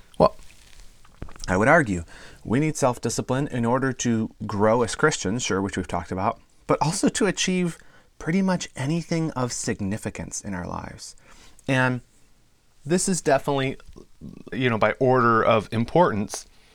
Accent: American